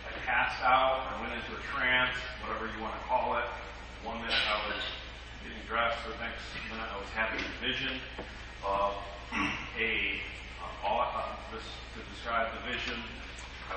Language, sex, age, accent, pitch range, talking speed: English, male, 40-59, American, 100-125 Hz, 165 wpm